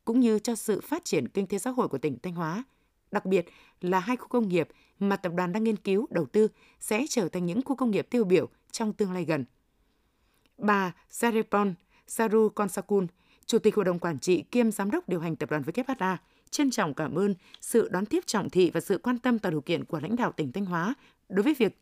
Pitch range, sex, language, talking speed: 180-235 Hz, female, Vietnamese, 235 wpm